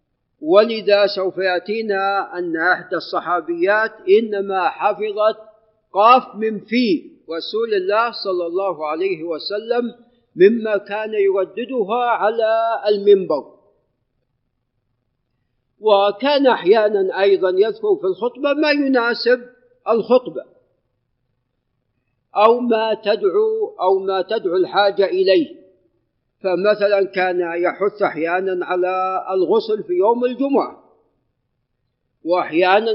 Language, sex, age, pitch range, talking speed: Arabic, male, 50-69, 180-230 Hz, 90 wpm